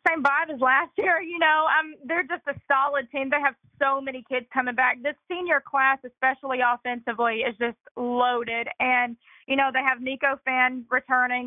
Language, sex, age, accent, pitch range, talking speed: English, female, 20-39, American, 245-275 Hz, 190 wpm